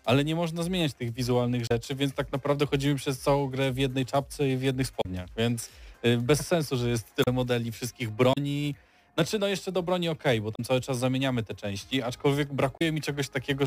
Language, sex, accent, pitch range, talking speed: Polish, male, native, 115-140 Hz, 210 wpm